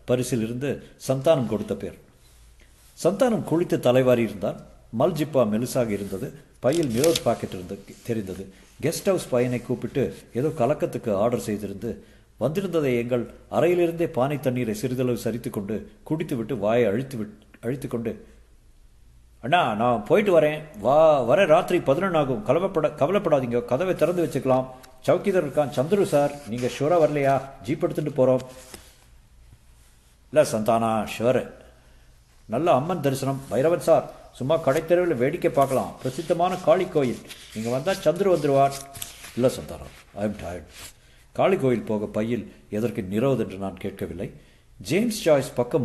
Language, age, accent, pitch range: Tamil, 50-69, native, 110-145 Hz